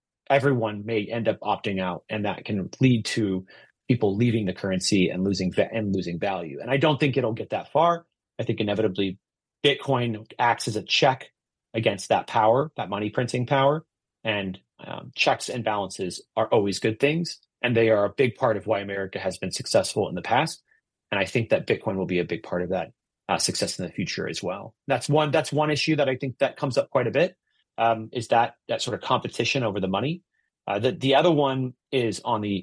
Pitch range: 100-135 Hz